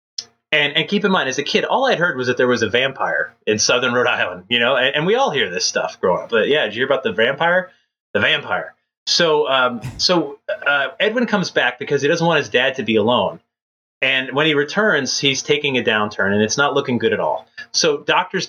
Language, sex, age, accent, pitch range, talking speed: English, male, 30-49, American, 125-190 Hz, 245 wpm